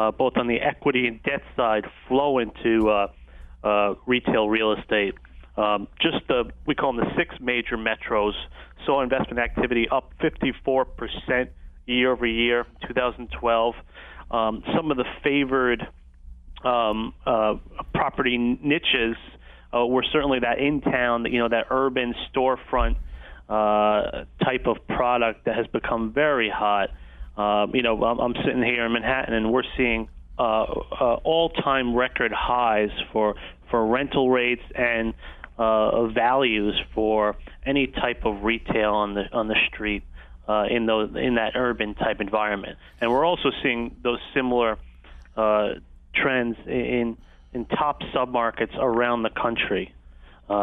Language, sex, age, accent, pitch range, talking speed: English, male, 30-49, American, 105-125 Hz, 140 wpm